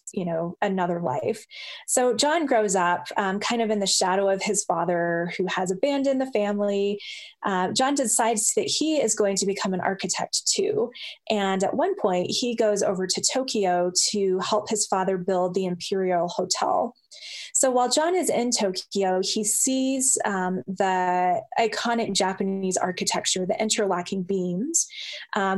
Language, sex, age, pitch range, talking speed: English, female, 20-39, 185-230 Hz, 160 wpm